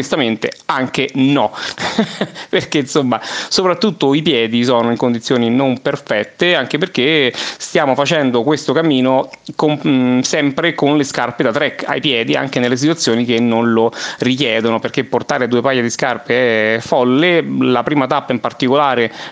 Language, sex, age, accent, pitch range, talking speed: Italian, male, 30-49, native, 120-150 Hz, 150 wpm